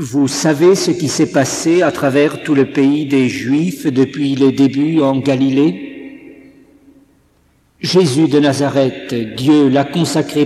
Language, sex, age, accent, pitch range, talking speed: French, male, 50-69, French, 135-155 Hz, 140 wpm